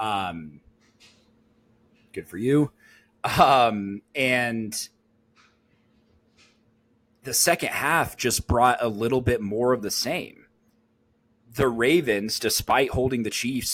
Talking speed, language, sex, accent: 105 wpm, English, male, American